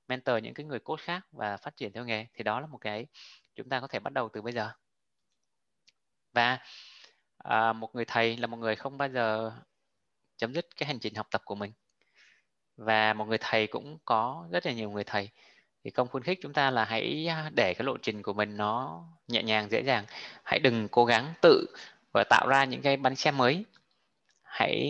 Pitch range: 110-135 Hz